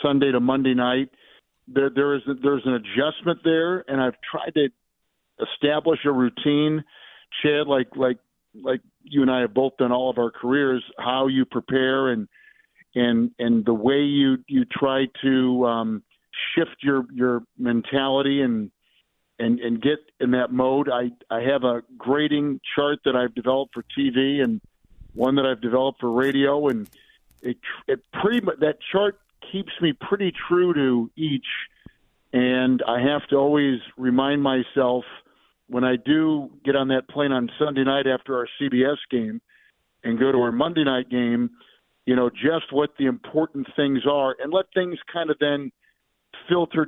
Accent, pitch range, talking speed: American, 125-150 Hz, 170 wpm